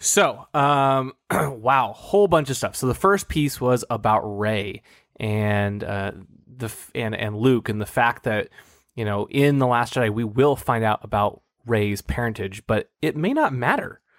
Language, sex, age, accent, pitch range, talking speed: English, male, 20-39, American, 105-130 Hz, 180 wpm